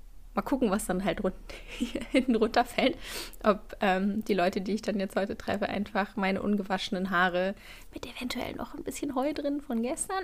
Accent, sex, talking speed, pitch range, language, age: German, female, 175 wpm, 185-240 Hz, German, 20-39